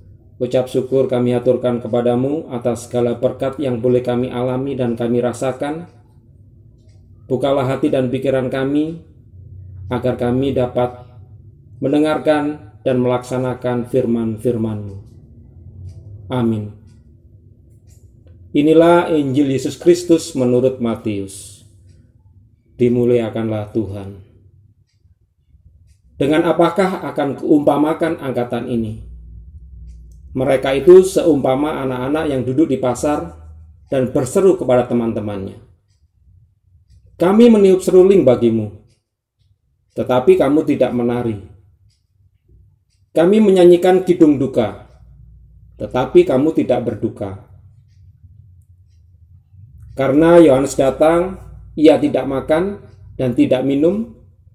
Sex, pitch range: male, 105-135 Hz